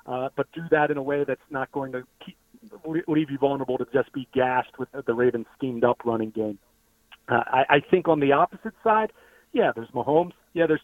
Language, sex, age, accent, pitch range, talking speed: English, male, 40-59, American, 130-165 Hz, 215 wpm